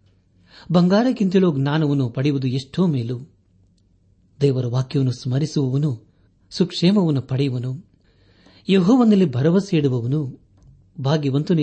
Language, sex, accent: Kannada, male, native